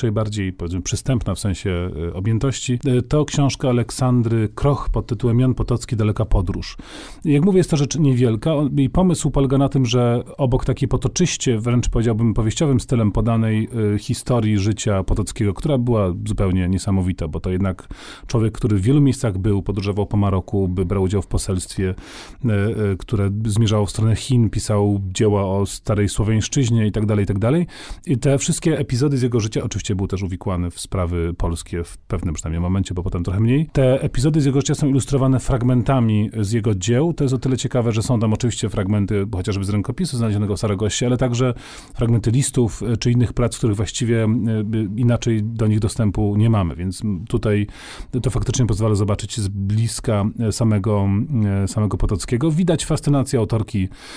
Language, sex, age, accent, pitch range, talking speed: Polish, male, 40-59, native, 100-130 Hz, 170 wpm